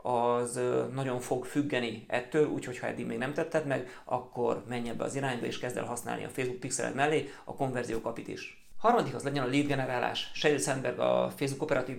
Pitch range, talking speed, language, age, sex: 120-140 Hz, 195 wpm, Hungarian, 30-49, male